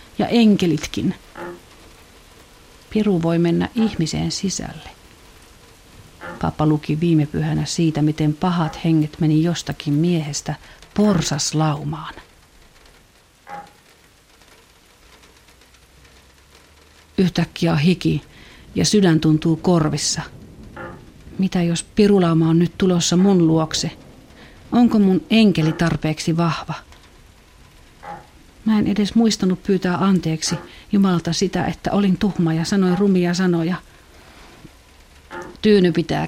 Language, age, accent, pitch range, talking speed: Finnish, 50-69, native, 160-205 Hz, 90 wpm